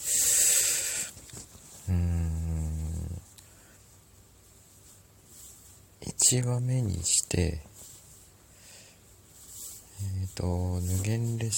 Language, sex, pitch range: Japanese, male, 90-110 Hz